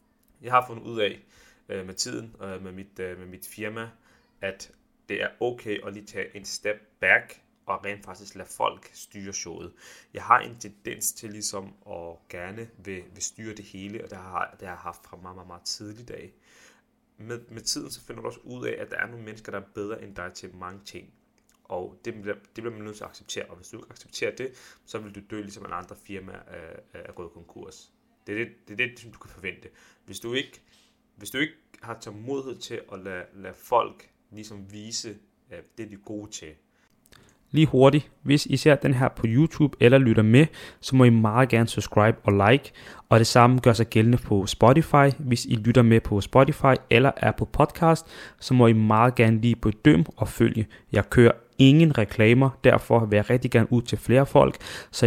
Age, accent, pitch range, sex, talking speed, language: 30-49, native, 105-125 Hz, male, 215 wpm, Danish